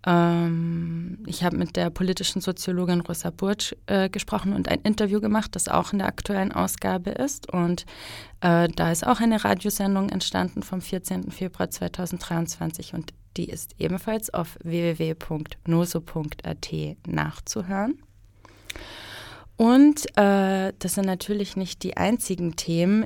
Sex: female